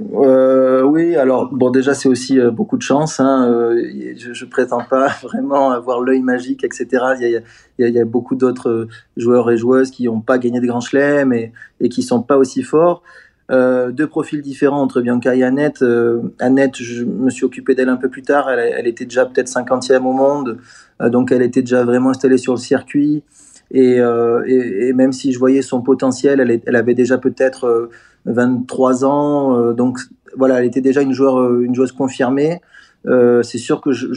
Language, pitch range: French, 125-140 Hz